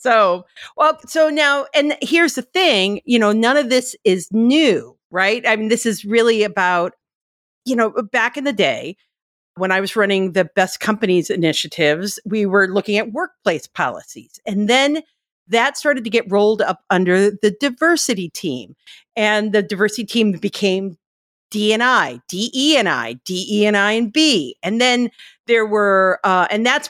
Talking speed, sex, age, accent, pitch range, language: 165 wpm, female, 50-69, American, 190-250 Hz, English